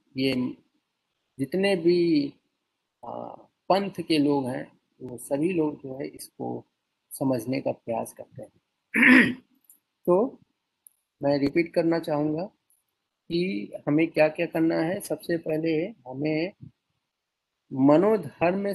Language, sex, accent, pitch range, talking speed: Hindi, male, native, 140-180 Hz, 105 wpm